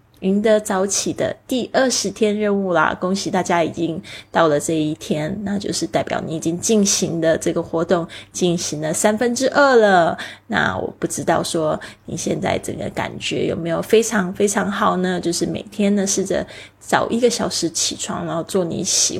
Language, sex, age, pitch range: Chinese, female, 20-39, 170-200 Hz